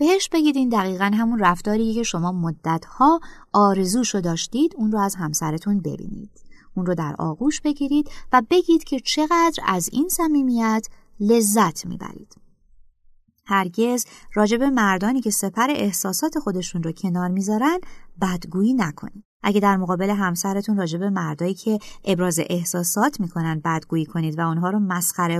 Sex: female